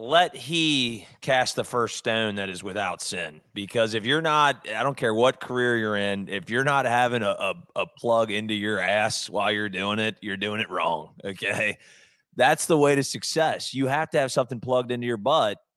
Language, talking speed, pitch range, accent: English, 210 wpm, 105-135 Hz, American